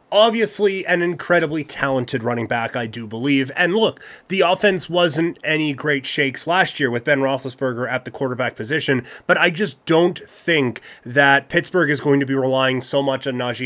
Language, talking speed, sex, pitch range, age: English, 185 wpm, male, 130-160 Hz, 30-49